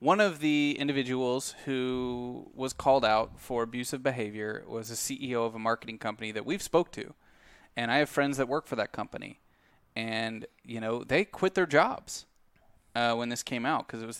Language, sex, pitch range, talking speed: English, male, 115-140 Hz, 195 wpm